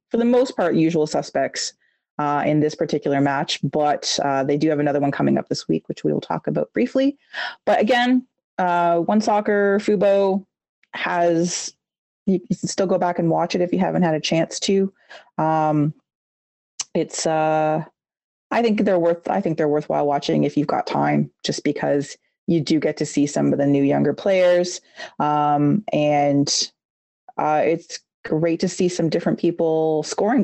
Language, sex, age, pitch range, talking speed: English, female, 30-49, 150-195 Hz, 175 wpm